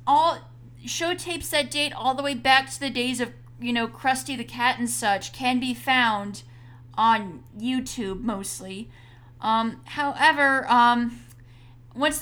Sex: female